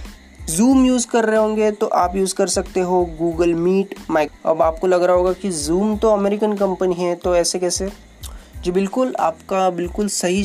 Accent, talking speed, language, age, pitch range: native, 190 wpm, Hindi, 30-49, 165-205 Hz